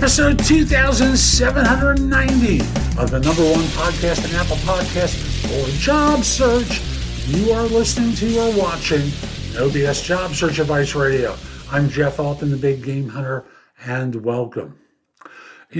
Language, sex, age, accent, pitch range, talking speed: English, male, 60-79, American, 125-170 Hz, 130 wpm